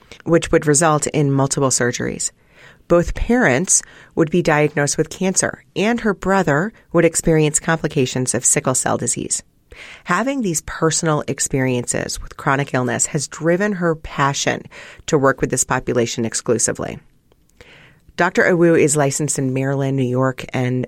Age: 30-49